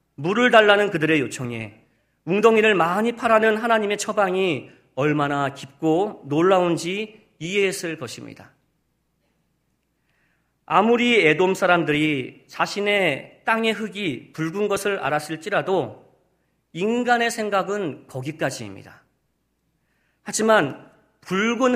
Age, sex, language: 40-59, male, Korean